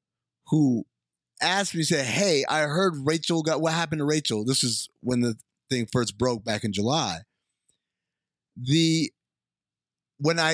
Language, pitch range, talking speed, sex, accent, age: English, 140-200 Hz, 150 wpm, male, American, 30-49